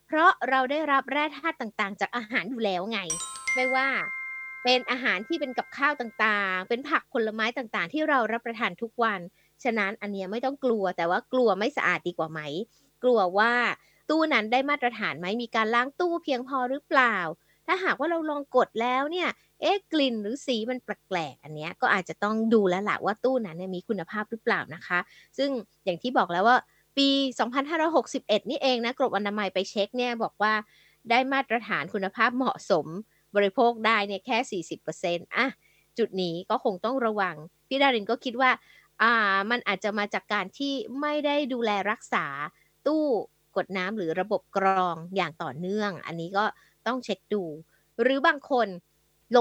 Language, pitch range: Thai, 190-260 Hz